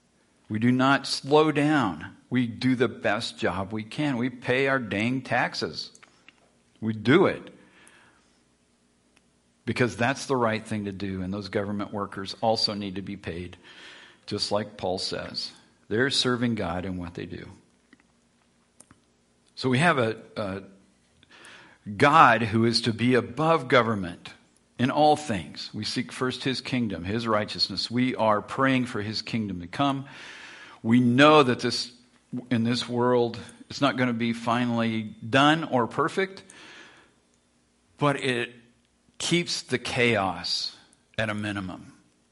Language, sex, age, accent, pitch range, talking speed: English, male, 50-69, American, 75-125 Hz, 140 wpm